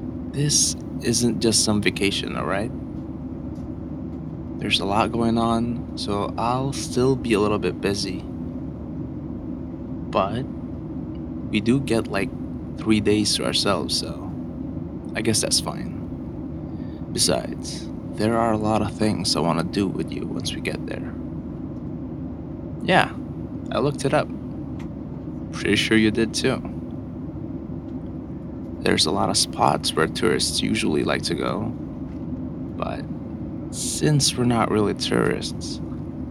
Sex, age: male, 20-39